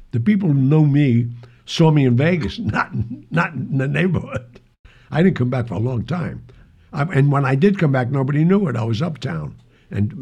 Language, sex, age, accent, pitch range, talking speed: English, male, 60-79, American, 105-160 Hz, 215 wpm